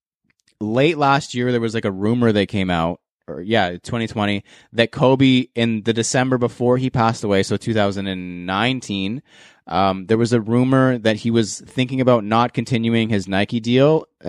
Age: 20-39